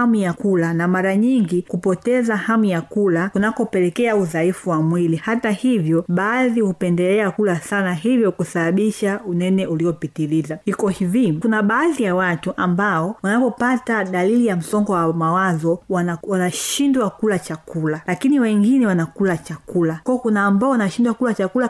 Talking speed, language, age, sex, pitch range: 140 wpm, Swahili, 30-49, female, 180-225 Hz